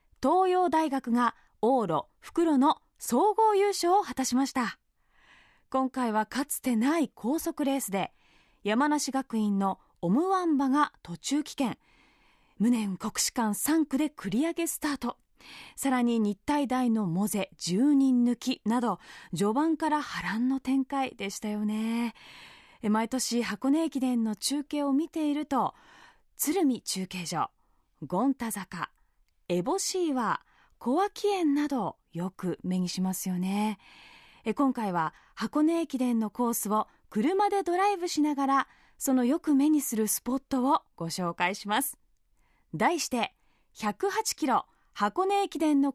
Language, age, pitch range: Japanese, 20-39, 215-310 Hz